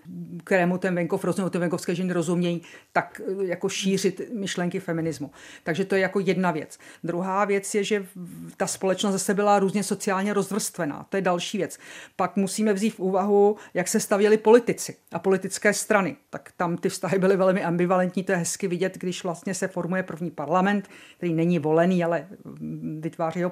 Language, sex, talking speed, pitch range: Czech, female, 170 wpm, 170-195 Hz